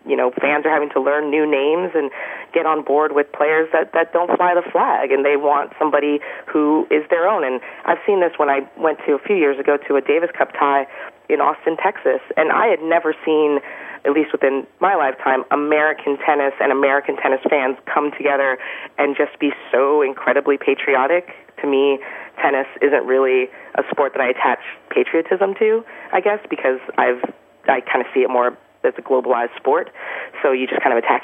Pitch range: 140-165 Hz